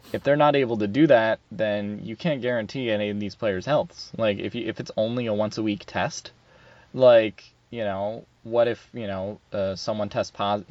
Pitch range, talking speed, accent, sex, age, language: 105-120 Hz, 200 wpm, American, male, 20-39, English